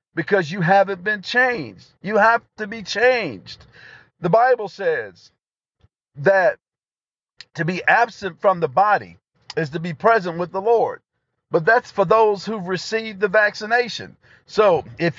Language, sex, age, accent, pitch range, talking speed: English, male, 50-69, American, 165-215 Hz, 145 wpm